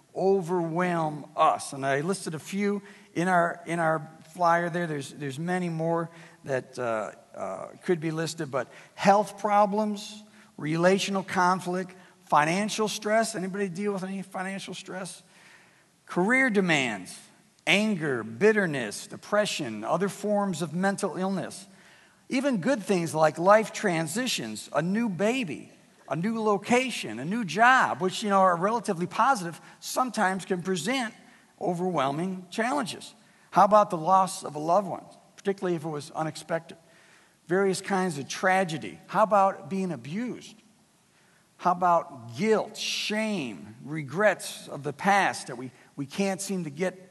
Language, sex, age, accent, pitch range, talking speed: English, male, 60-79, American, 165-205 Hz, 140 wpm